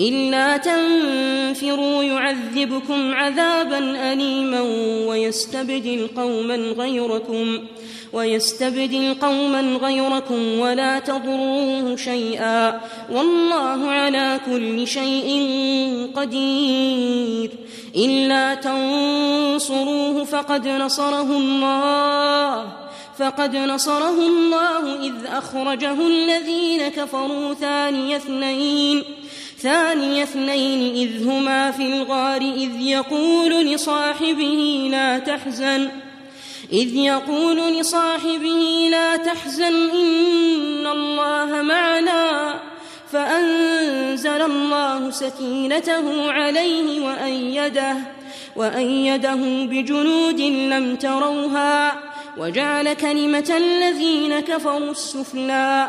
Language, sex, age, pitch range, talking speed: Arabic, female, 20-39, 265-295 Hz, 70 wpm